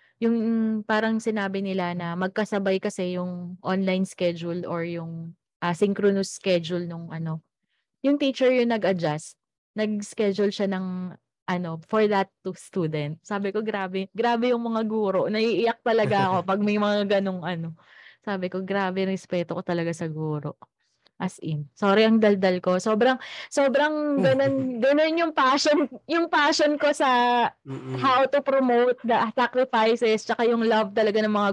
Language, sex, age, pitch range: Filipino, female, 20-39, 185-240 Hz